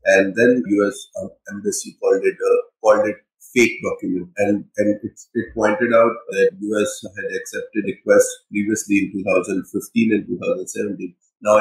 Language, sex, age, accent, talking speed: English, male, 30-49, Indian, 145 wpm